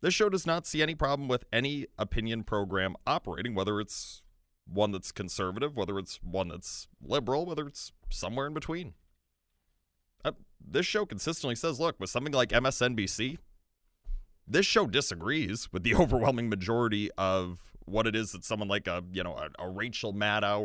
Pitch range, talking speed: 95-150 Hz, 165 wpm